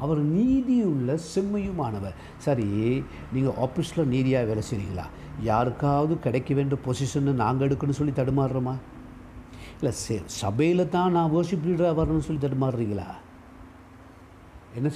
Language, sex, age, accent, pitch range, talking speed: Tamil, male, 60-79, native, 105-135 Hz, 110 wpm